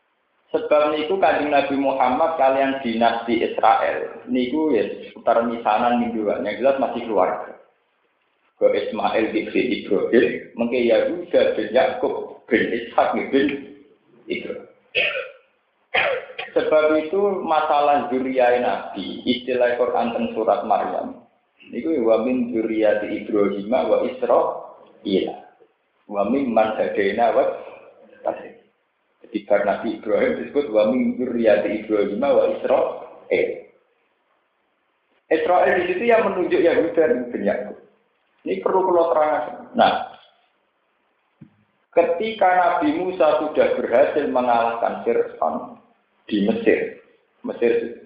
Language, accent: Indonesian, native